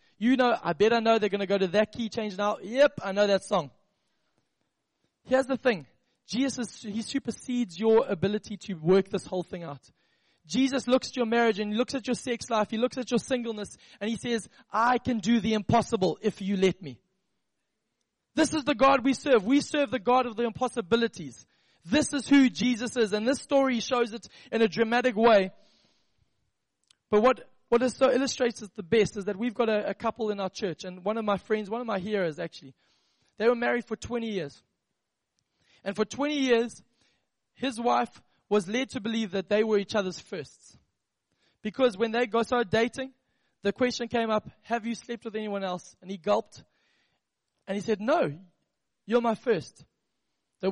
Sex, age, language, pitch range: male, 20-39, English, 200-245 Hz